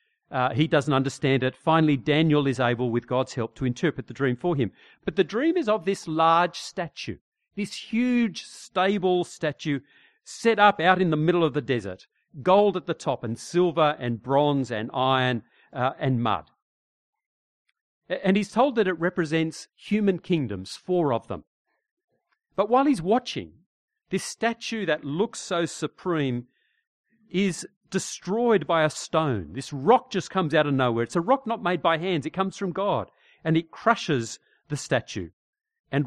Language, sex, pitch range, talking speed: English, male, 140-210 Hz, 170 wpm